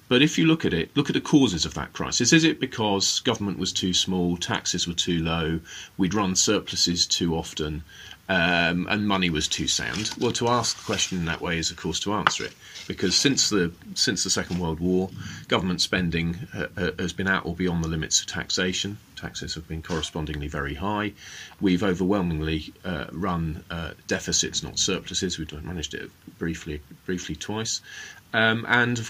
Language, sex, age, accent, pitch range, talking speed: English, male, 40-59, British, 85-115 Hz, 190 wpm